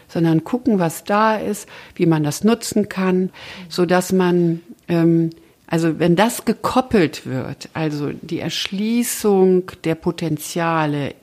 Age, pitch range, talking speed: 60-79, 155-180 Hz, 125 wpm